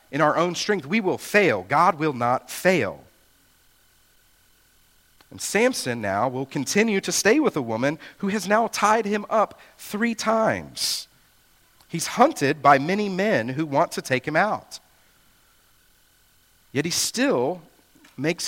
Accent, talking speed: American, 145 wpm